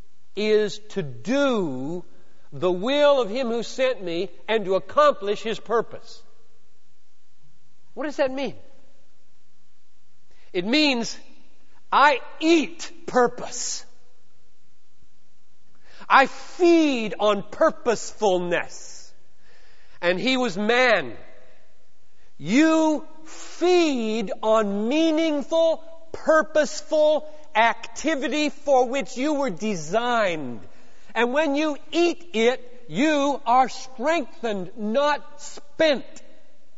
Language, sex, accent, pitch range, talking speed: Hindi, male, American, 190-285 Hz, 85 wpm